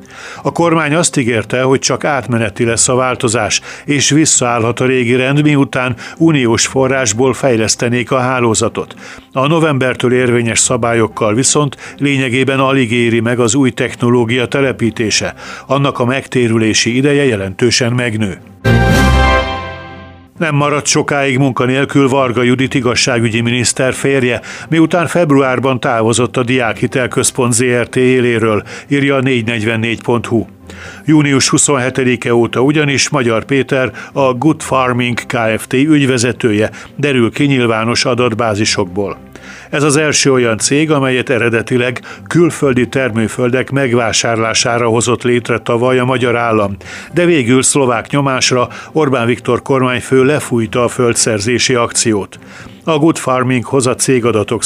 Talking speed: 120 wpm